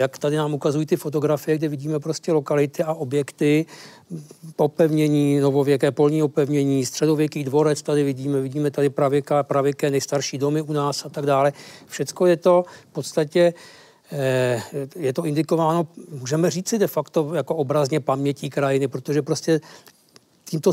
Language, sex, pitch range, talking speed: Czech, male, 140-155 Hz, 150 wpm